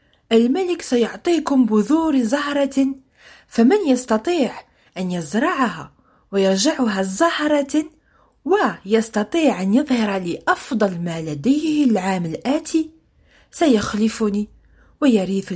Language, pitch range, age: French, 190-275 Hz, 40-59